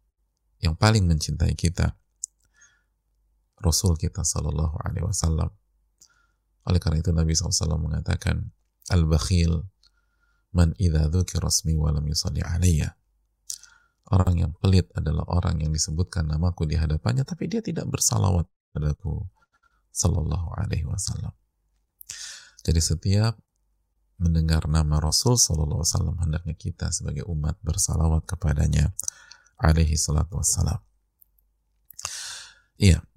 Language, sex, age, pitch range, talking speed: Indonesian, male, 30-49, 80-95 Hz, 105 wpm